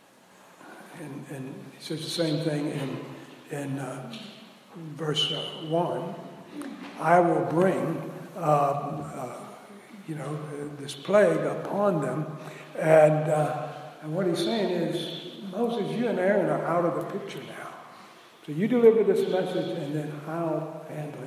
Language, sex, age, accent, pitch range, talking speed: English, male, 60-79, American, 150-185 Hz, 140 wpm